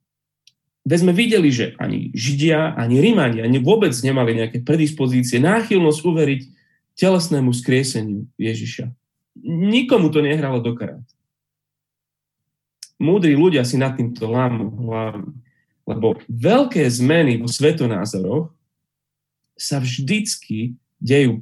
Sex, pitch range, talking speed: male, 125-150 Hz, 105 wpm